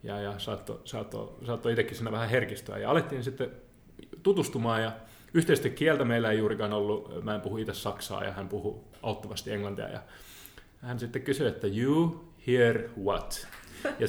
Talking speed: 165 wpm